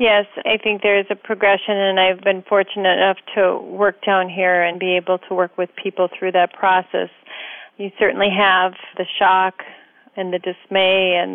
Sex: female